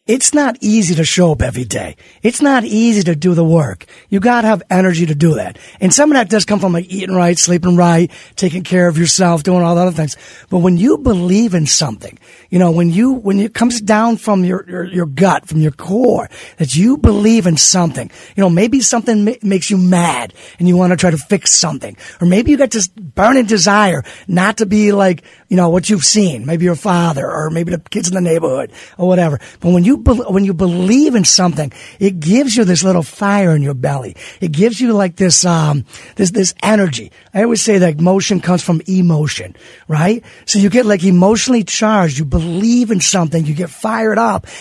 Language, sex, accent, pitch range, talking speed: English, male, American, 170-215 Hz, 220 wpm